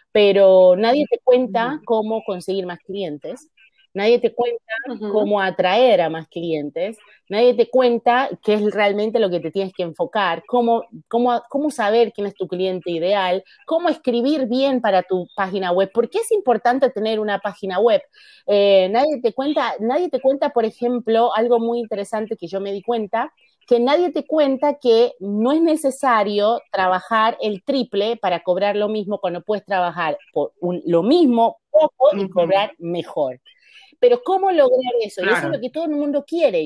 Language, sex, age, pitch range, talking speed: Spanish, female, 30-49, 195-265 Hz, 170 wpm